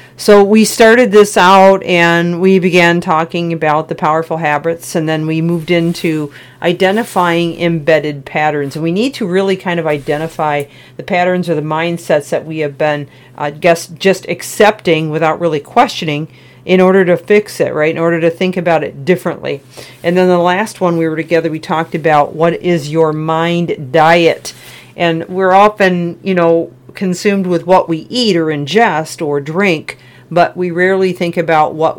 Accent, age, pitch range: American, 40-59, 155-180 Hz